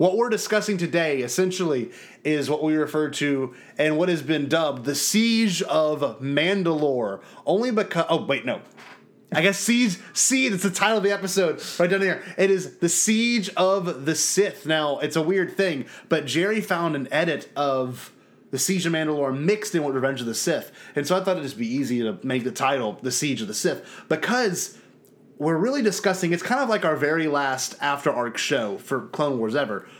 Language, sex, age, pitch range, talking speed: English, male, 30-49, 135-195 Hz, 200 wpm